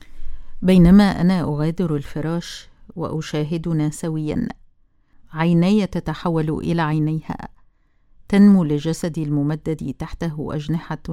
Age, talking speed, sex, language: 50-69, 80 wpm, female, Arabic